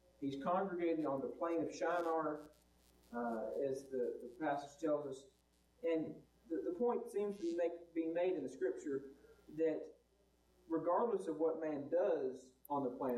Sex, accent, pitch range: male, American, 120-170 Hz